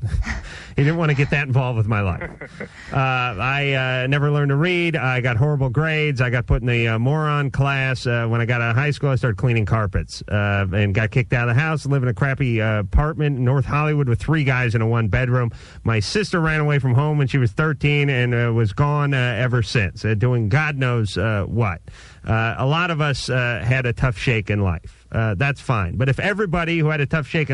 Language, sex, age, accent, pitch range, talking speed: English, male, 40-59, American, 120-155 Hz, 240 wpm